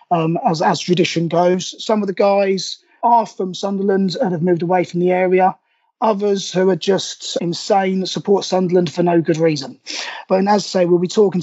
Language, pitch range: English, 180-210 Hz